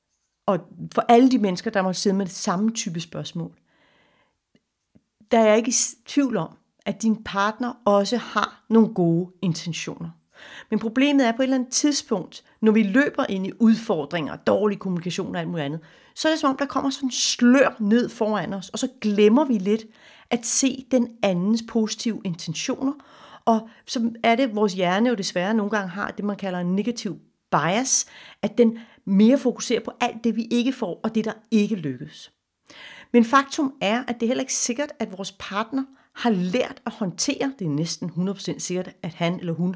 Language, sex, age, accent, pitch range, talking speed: Danish, female, 40-59, native, 190-245 Hz, 195 wpm